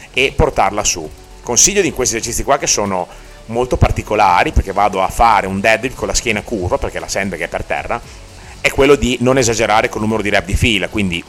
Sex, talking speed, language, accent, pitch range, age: male, 220 wpm, Italian, native, 100-125 Hz, 30-49